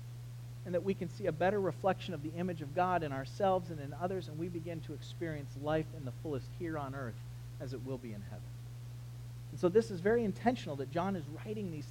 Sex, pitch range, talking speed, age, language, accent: male, 120-150 Hz, 235 wpm, 40-59, English, American